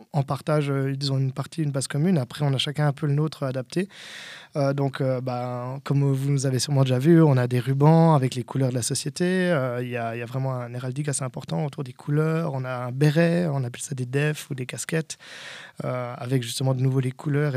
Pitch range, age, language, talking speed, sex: 130-150 Hz, 20-39, French, 245 wpm, male